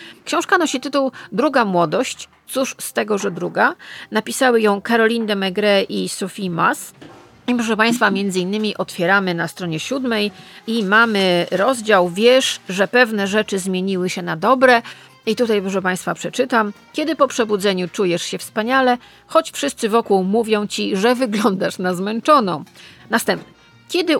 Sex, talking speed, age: female, 145 wpm, 40-59